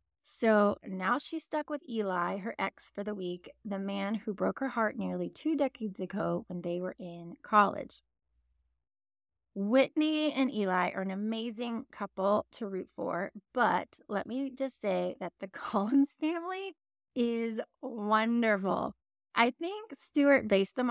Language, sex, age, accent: English, female, 20-39, American